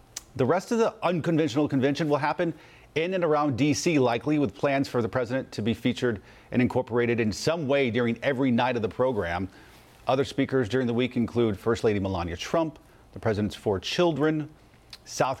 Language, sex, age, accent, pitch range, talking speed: English, male, 40-59, American, 115-145 Hz, 185 wpm